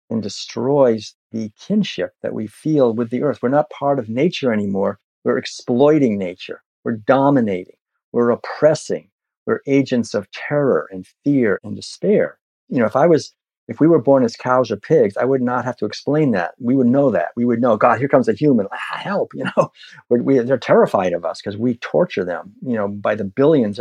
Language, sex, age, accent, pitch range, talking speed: English, male, 50-69, American, 110-145 Hz, 205 wpm